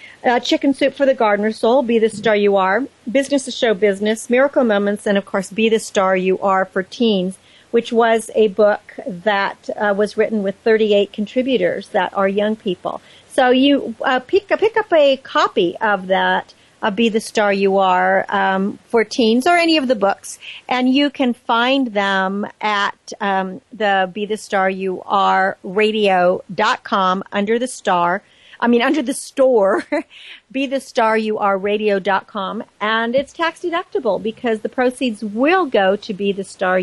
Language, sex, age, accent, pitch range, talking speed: English, female, 50-69, American, 205-260 Hz, 170 wpm